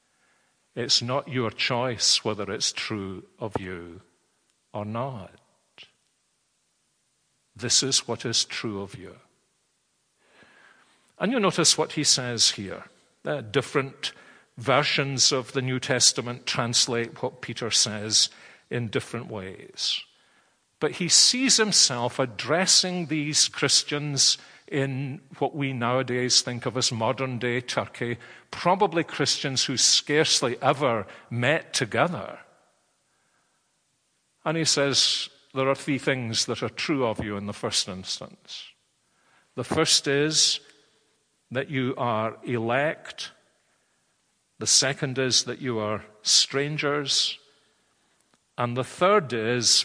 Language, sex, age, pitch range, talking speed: English, male, 50-69, 115-145 Hz, 115 wpm